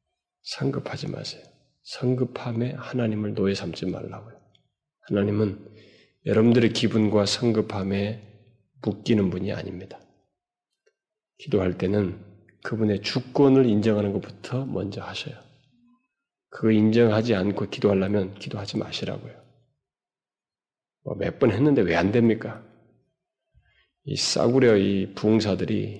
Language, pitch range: Korean, 100-130 Hz